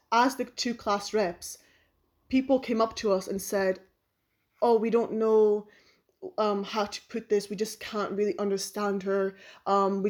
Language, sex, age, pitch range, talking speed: English, female, 20-39, 195-220 Hz, 170 wpm